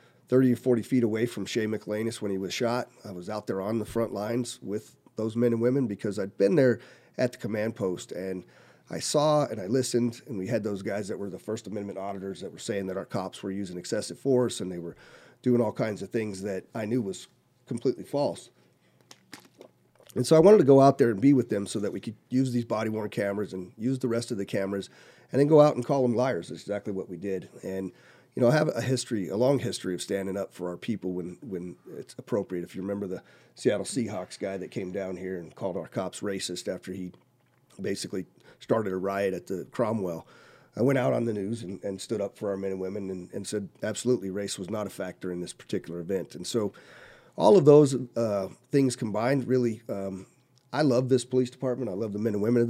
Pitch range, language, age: 95-125 Hz, English, 40-59